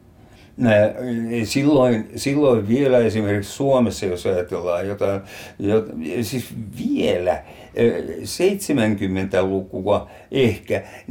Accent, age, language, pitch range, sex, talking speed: native, 60-79, Finnish, 105-130 Hz, male, 70 wpm